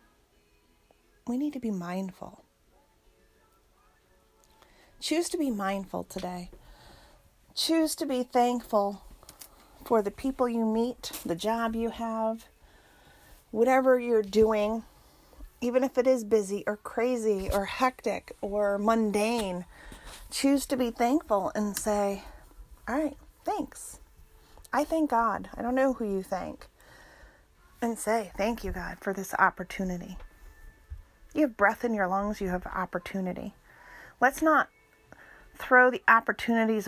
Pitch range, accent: 180-235 Hz, American